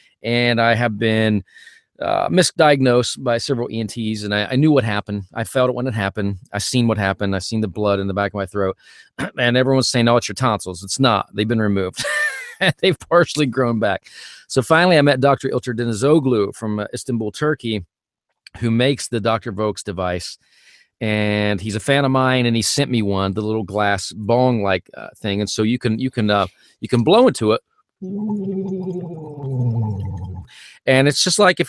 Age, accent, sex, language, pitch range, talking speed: 40-59, American, male, English, 105-135 Hz, 195 wpm